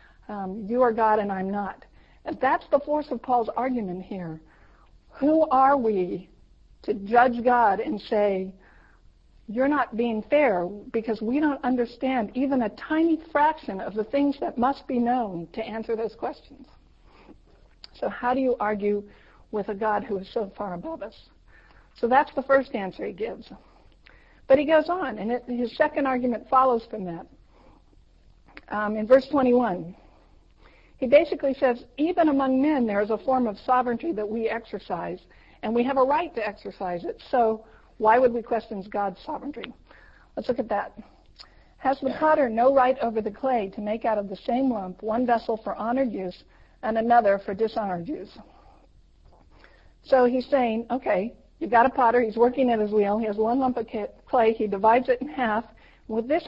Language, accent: English, American